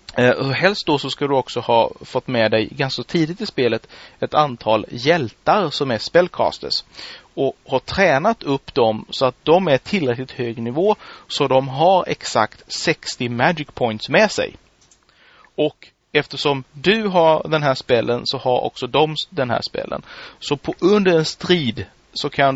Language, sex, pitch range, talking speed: Swedish, male, 120-160 Hz, 170 wpm